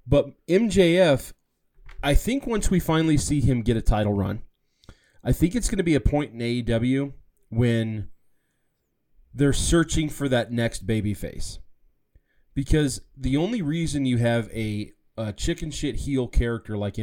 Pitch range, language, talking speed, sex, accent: 105-130 Hz, English, 155 wpm, male, American